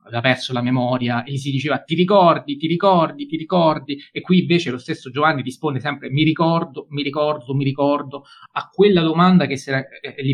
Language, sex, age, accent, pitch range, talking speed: Italian, male, 30-49, native, 125-145 Hz, 210 wpm